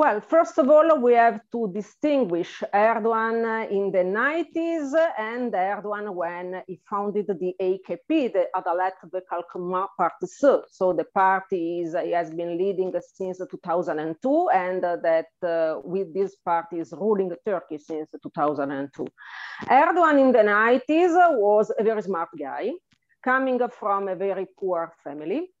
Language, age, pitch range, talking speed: Turkish, 40-59, 175-225 Hz, 140 wpm